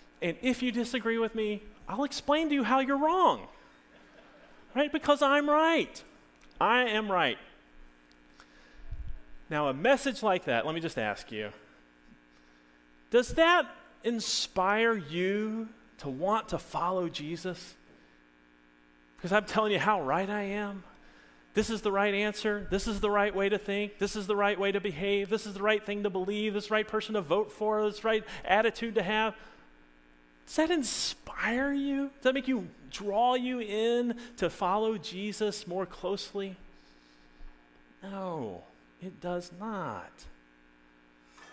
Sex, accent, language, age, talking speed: male, American, English, 30-49, 155 wpm